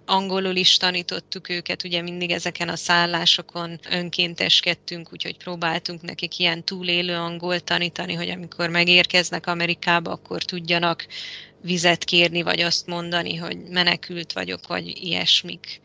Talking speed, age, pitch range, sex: 125 wpm, 20-39, 175-185 Hz, female